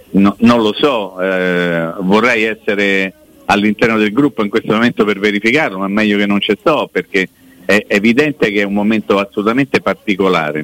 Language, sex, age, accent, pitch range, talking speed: Italian, male, 50-69, native, 95-120 Hz, 175 wpm